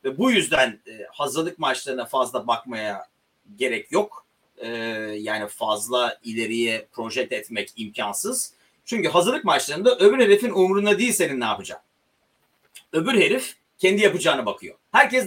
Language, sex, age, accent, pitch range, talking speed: Turkish, male, 40-59, native, 130-200 Hz, 125 wpm